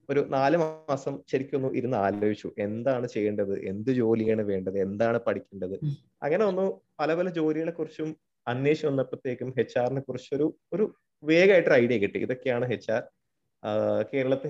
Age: 30-49